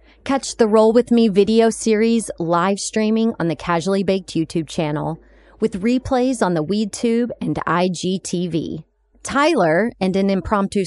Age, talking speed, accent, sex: 30-49, 145 wpm, American, female